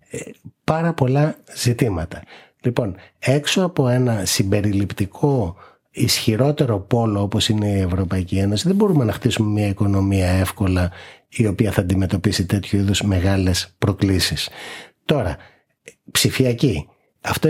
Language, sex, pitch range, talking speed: Greek, male, 100-145 Hz, 115 wpm